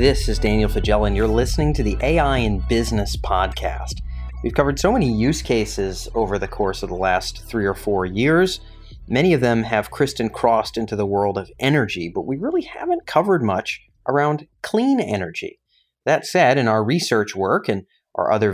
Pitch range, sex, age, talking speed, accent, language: 105-140 Hz, male, 30-49, 190 wpm, American, English